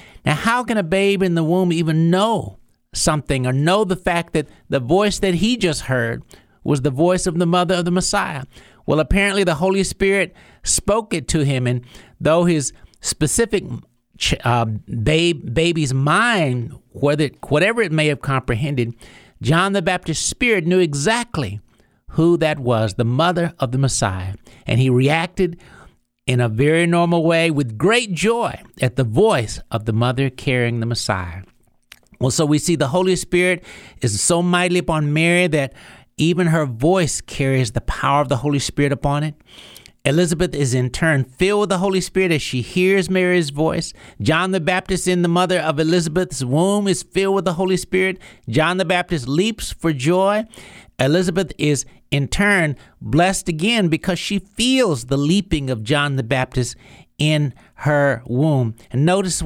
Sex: male